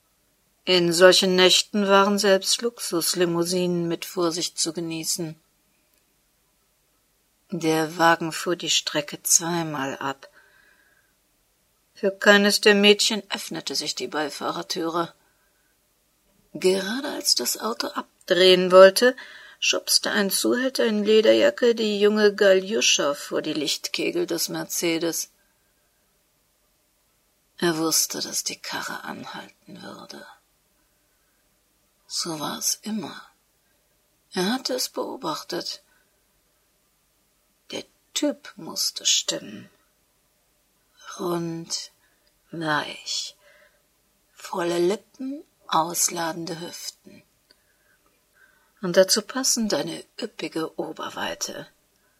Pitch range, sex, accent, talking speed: 170-210 Hz, female, German, 85 wpm